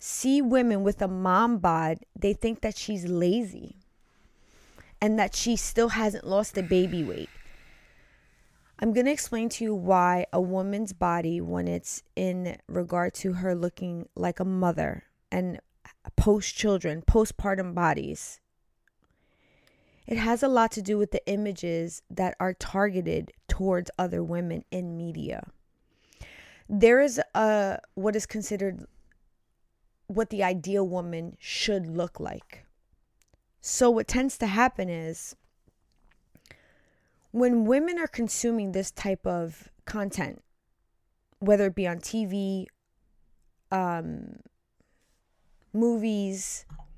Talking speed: 120 wpm